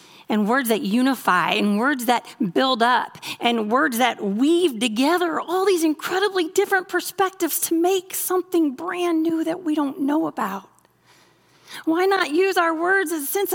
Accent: American